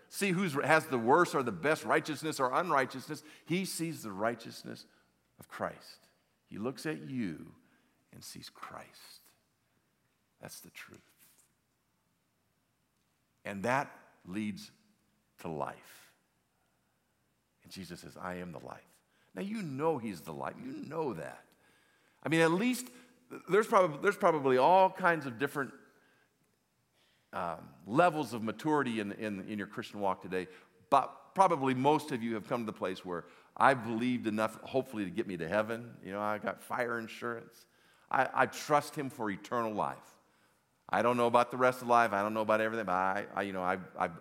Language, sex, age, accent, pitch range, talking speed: English, male, 50-69, American, 105-155 Hz, 165 wpm